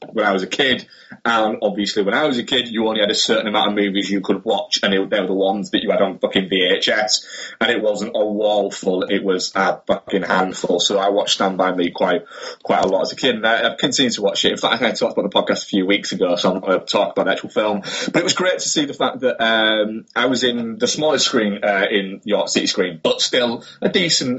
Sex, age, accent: male, 20-39, British